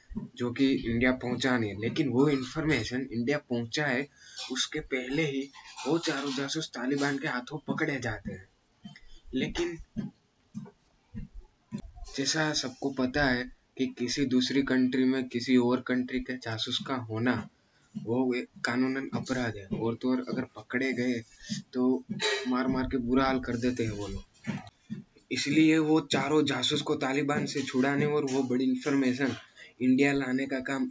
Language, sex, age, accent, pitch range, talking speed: Hindi, male, 20-39, native, 125-140 Hz, 150 wpm